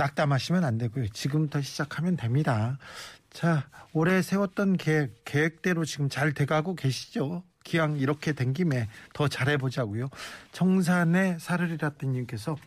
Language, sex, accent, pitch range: Korean, male, native, 135-175 Hz